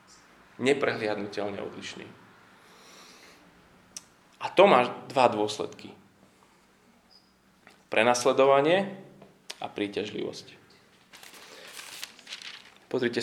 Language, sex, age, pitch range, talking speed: Slovak, male, 20-39, 120-165 Hz, 50 wpm